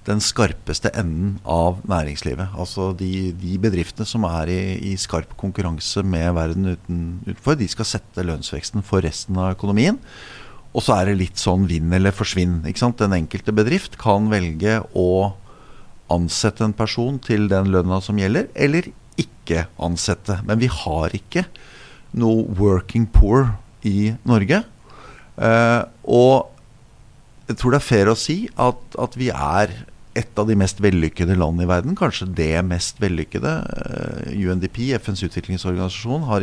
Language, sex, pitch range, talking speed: English, male, 85-110 Hz, 155 wpm